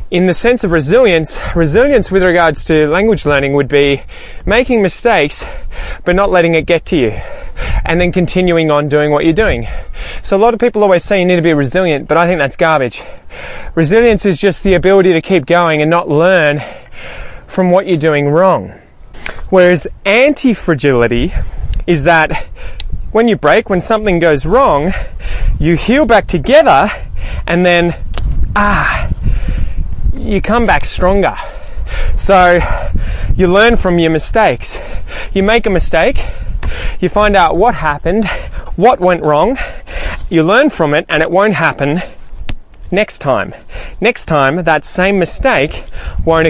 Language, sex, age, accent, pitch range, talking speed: English, male, 20-39, Australian, 155-195 Hz, 155 wpm